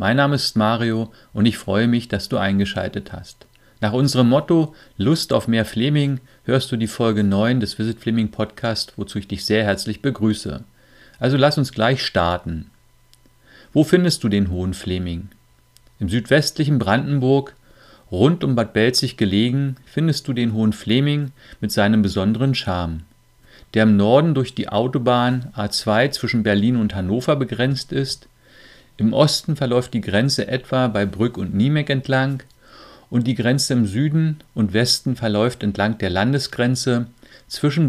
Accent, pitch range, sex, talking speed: German, 110-135 Hz, male, 155 wpm